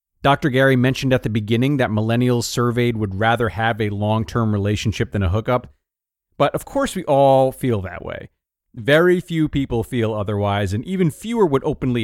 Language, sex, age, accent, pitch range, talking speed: English, male, 30-49, American, 105-145 Hz, 180 wpm